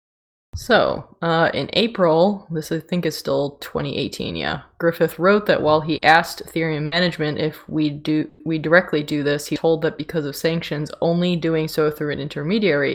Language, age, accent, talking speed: English, 20-39, American, 175 wpm